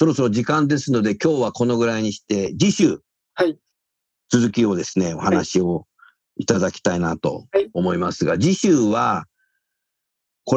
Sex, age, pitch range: male, 50-69, 110-175 Hz